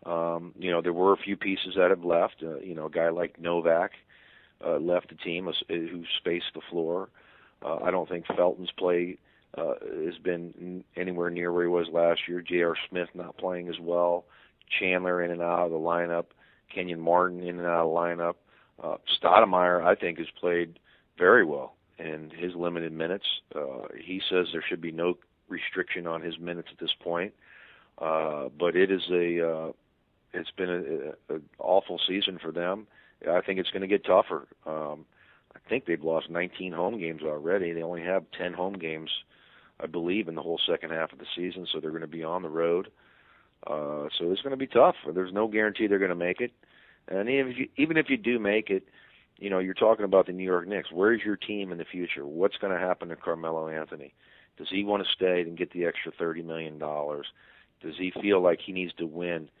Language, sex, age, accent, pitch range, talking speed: English, male, 40-59, American, 85-90 Hz, 210 wpm